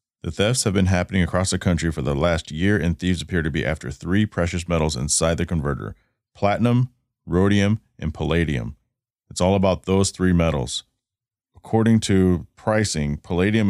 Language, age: English, 30-49